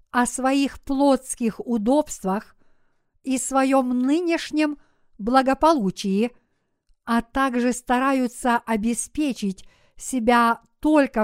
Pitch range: 225-270 Hz